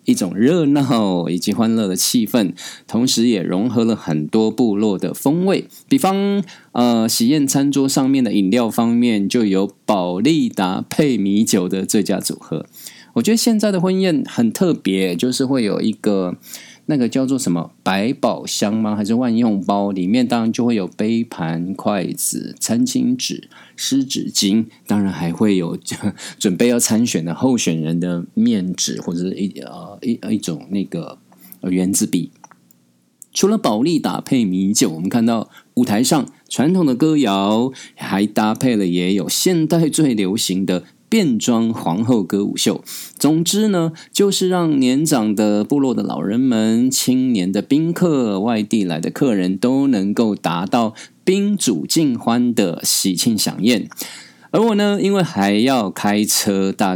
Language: Chinese